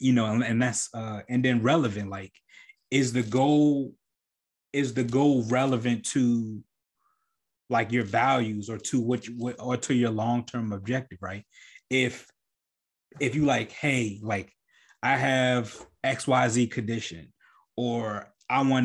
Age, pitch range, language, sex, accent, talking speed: 20-39, 110-135 Hz, English, male, American, 145 wpm